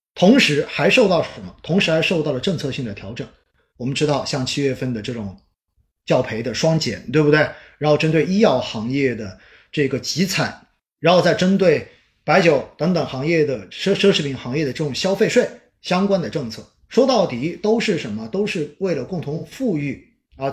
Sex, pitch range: male, 135-195 Hz